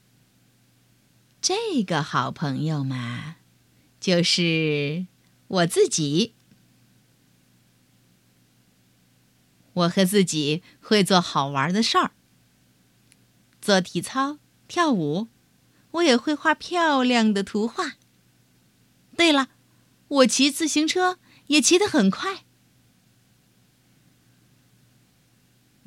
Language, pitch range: Chinese, 160-245 Hz